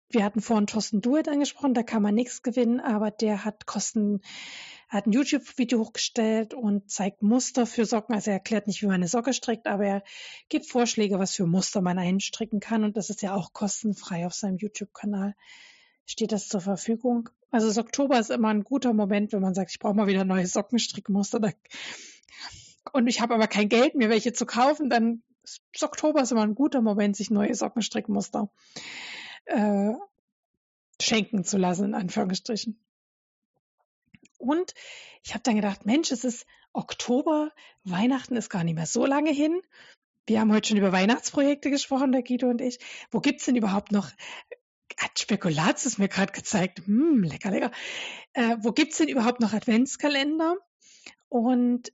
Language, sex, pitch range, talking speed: German, female, 205-255 Hz, 175 wpm